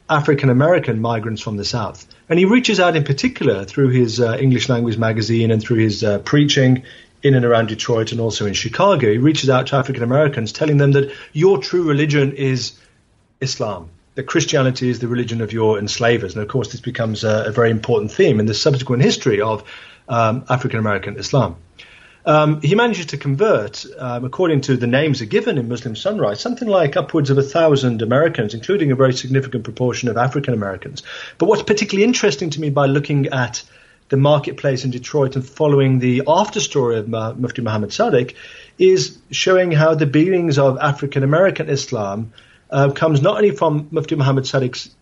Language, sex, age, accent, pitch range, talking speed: English, male, 40-59, British, 115-150 Hz, 180 wpm